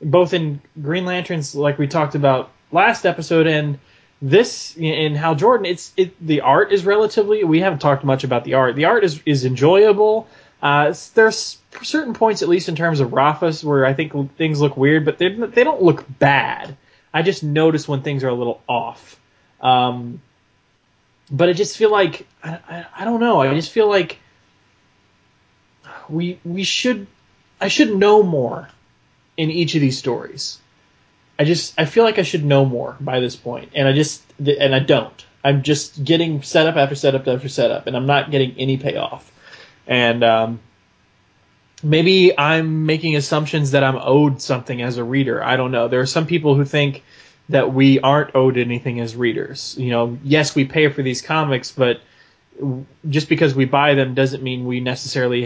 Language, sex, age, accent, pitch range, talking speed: English, male, 20-39, American, 130-165 Hz, 185 wpm